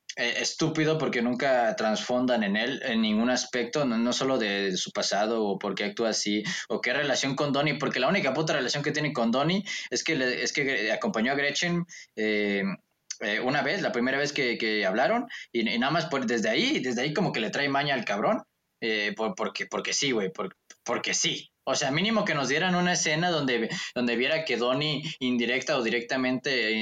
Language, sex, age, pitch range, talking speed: English, male, 20-39, 115-165 Hz, 210 wpm